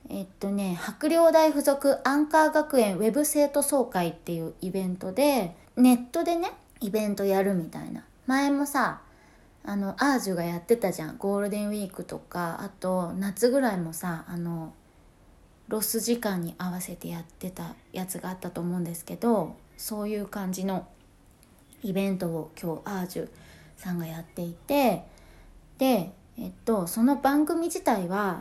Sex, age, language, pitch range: female, 20-39, Japanese, 180-245 Hz